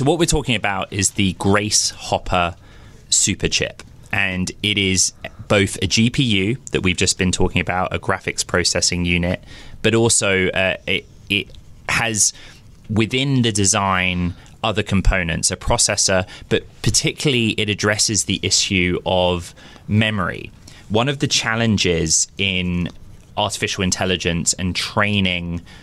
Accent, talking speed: British, 130 wpm